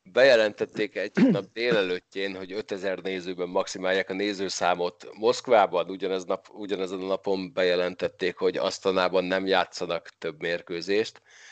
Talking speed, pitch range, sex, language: 120 wpm, 95-135 Hz, male, Hungarian